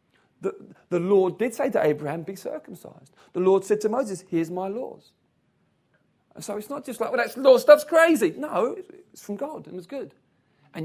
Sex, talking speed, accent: male, 200 wpm, British